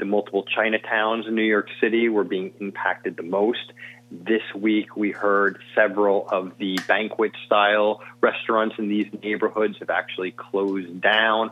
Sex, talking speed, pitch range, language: male, 150 wpm, 95-115 Hz, English